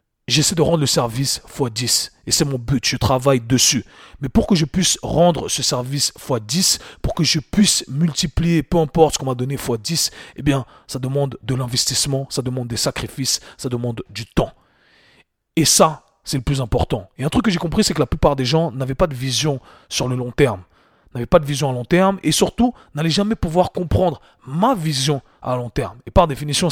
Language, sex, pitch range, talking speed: French, male, 130-165 Hz, 215 wpm